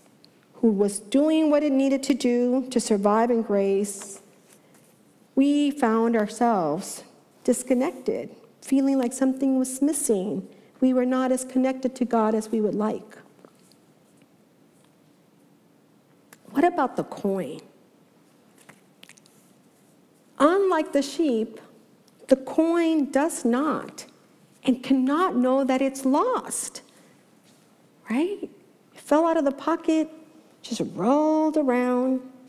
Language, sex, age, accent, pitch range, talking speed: English, female, 50-69, American, 220-305 Hz, 110 wpm